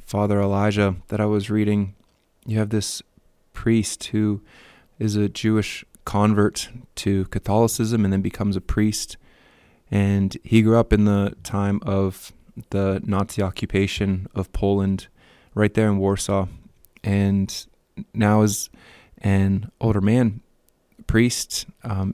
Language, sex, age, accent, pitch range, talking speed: English, male, 20-39, American, 100-110 Hz, 125 wpm